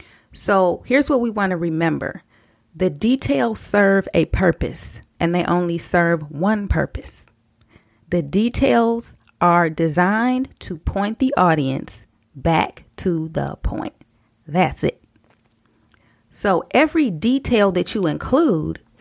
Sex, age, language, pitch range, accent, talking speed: female, 30-49, English, 155-200 Hz, American, 120 wpm